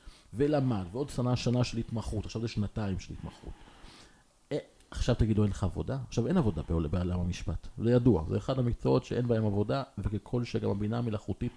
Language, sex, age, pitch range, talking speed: Hebrew, male, 40-59, 95-130 Hz, 175 wpm